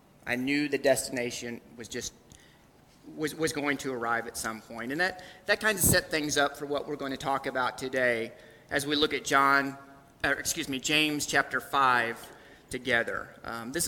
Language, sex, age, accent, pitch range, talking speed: English, male, 30-49, American, 130-155 Hz, 185 wpm